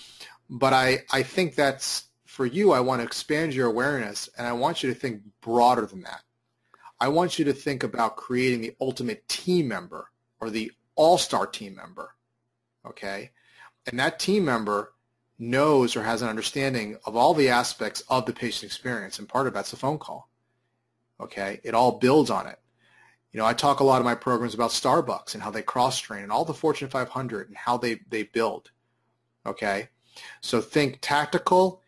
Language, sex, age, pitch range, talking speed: English, male, 30-49, 115-135 Hz, 185 wpm